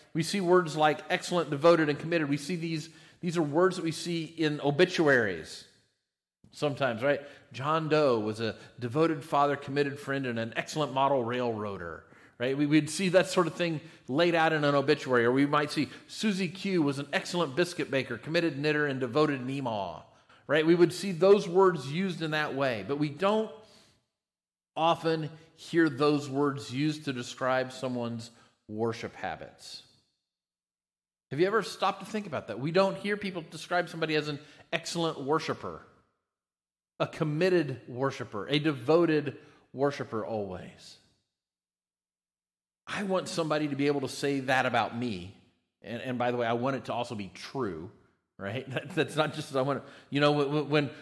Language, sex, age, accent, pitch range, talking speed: English, male, 40-59, American, 130-165 Hz, 170 wpm